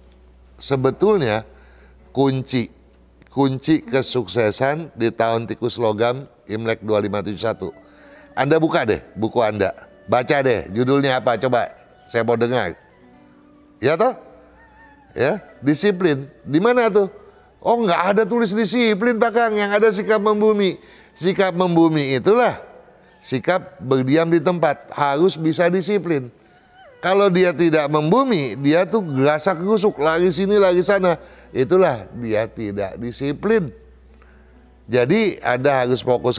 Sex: male